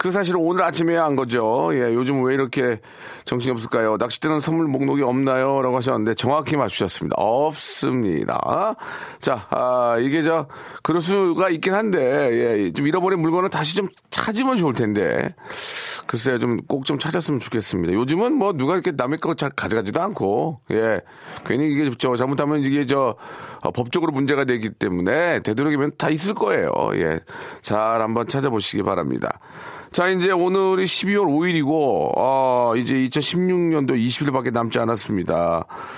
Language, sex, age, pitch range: Korean, male, 40-59, 115-160 Hz